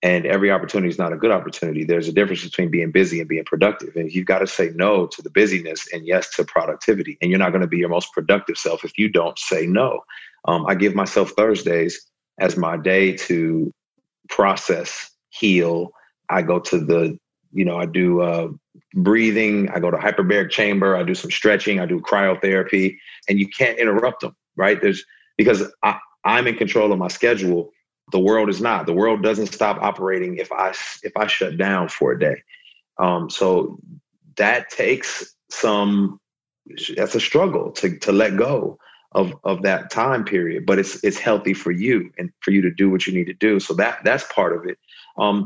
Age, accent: 40-59, American